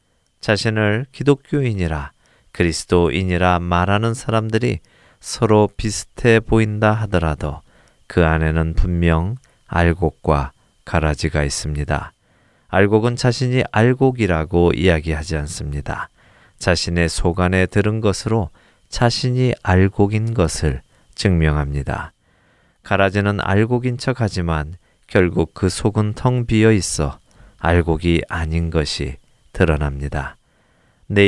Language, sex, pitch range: Korean, male, 80-110 Hz